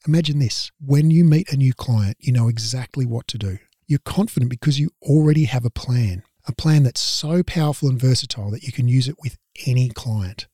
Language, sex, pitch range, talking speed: English, male, 110-145 Hz, 210 wpm